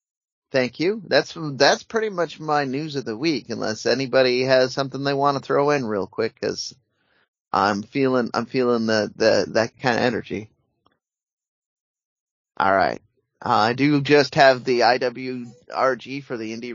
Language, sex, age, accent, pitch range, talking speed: English, male, 30-49, American, 115-140 Hz, 160 wpm